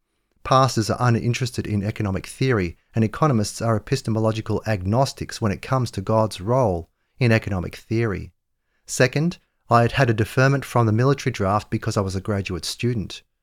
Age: 40-59